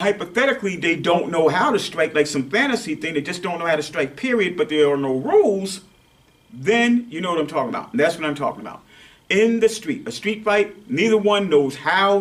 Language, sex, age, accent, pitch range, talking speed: English, male, 40-59, American, 155-215 Hz, 230 wpm